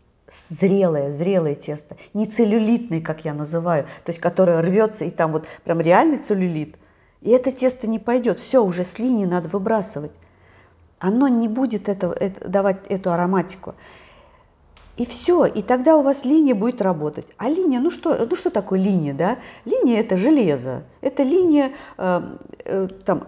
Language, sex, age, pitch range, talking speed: Russian, female, 40-59, 170-235 Hz, 155 wpm